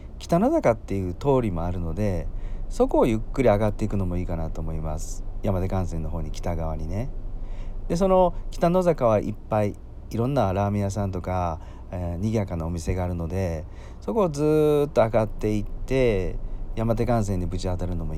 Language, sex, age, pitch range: Japanese, male, 40-59, 90-120 Hz